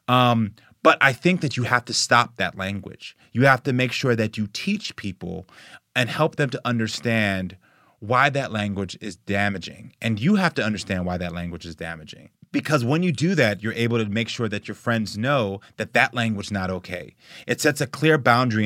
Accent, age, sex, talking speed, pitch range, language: American, 30-49, male, 210 wpm, 100-140 Hz, English